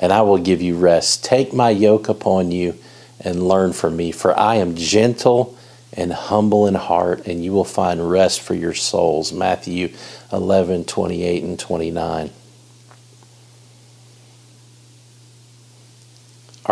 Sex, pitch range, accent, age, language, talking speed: male, 85-120 Hz, American, 50-69, English, 135 wpm